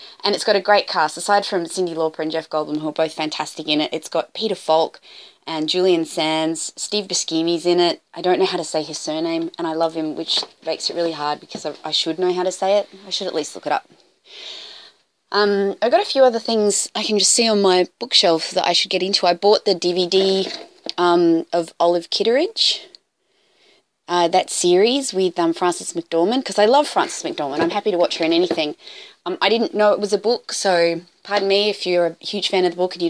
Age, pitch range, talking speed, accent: 20-39, 170-215 Hz, 235 wpm, Australian